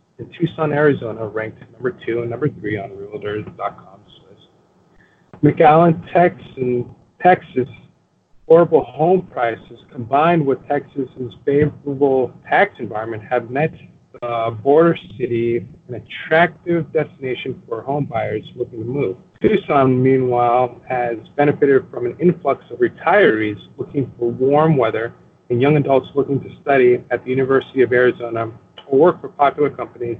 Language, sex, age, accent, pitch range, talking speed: English, male, 40-59, American, 120-155 Hz, 135 wpm